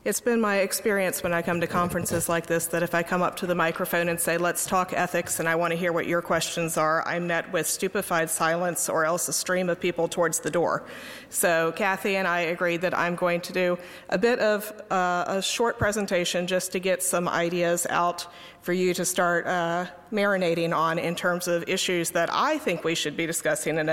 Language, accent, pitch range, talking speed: English, American, 165-180 Hz, 220 wpm